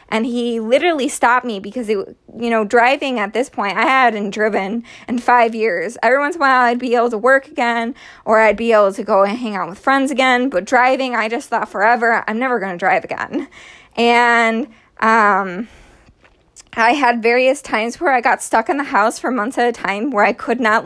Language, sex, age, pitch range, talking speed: English, female, 20-39, 210-255 Hz, 215 wpm